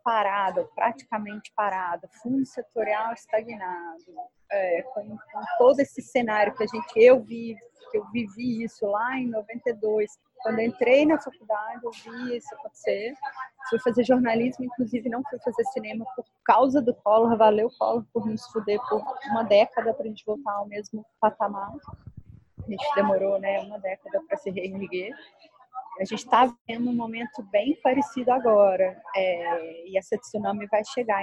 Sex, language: female, Portuguese